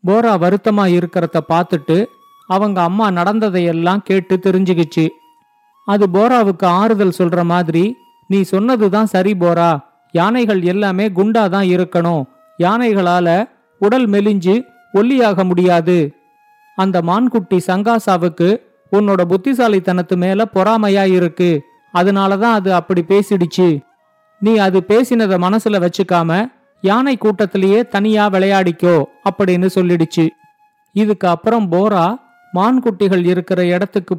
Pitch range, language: 180-215 Hz, Tamil